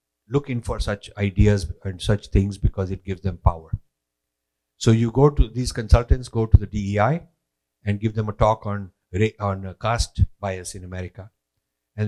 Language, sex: English, male